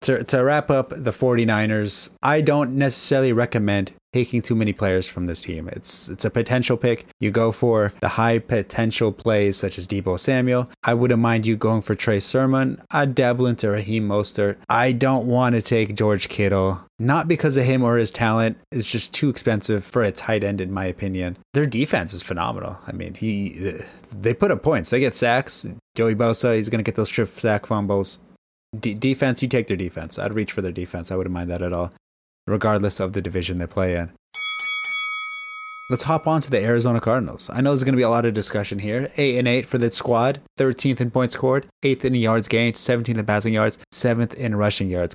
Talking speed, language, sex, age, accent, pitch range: 210 wpm, English, male, 30-49, American, 105-130 Hz